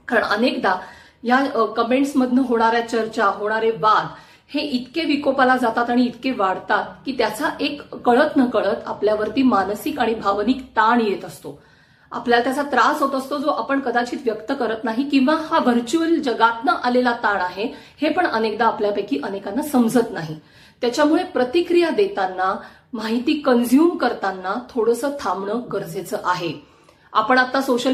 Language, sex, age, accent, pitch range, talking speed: Marathi, female, 40-59, native, 215-265 Hz, 135 wpm